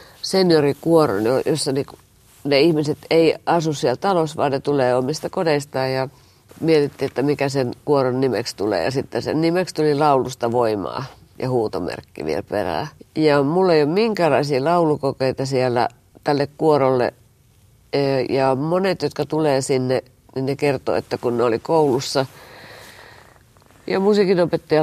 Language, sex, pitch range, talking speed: Finnish, female, 130-160 Hz, 135 wpm